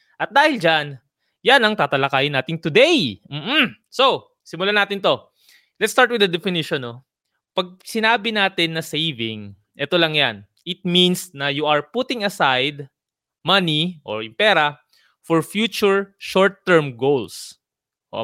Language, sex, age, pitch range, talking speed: Filipino, male, 20-39, 140-185 Hz, 140 wpm